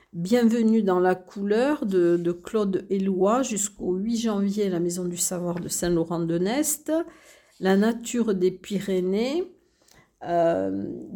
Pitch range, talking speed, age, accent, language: 180-225 Hz, 135 wpm, 50-69, French, French